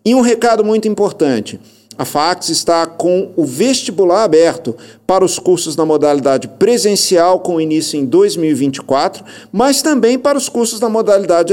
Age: 50-69